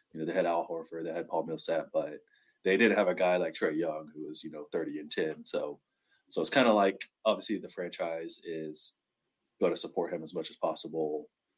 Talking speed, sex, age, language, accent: 230 wpm, male, 20-39, English, American